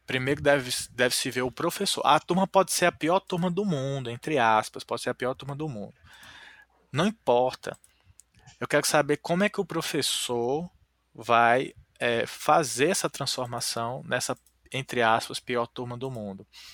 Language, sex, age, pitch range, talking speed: Portuguese, male, 20-39, 120-155 Hz, 160 wpm